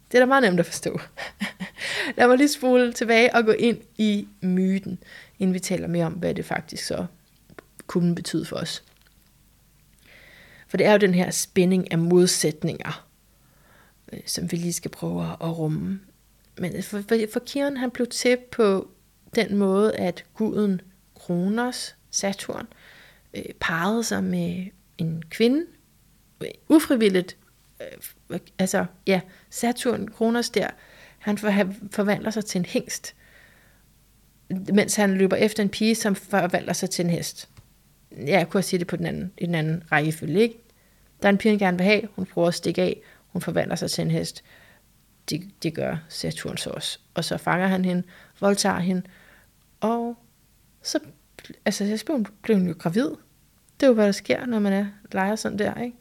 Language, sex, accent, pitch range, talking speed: Danish, female, native, 180-225 Hz, 165 wpm